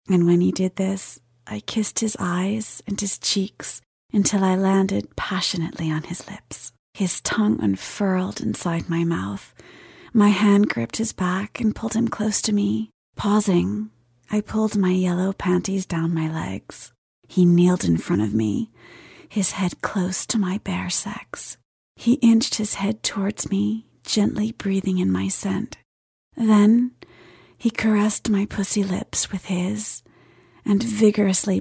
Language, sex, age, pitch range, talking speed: English, female, 30-49, 170-210 Hz, 150 wpm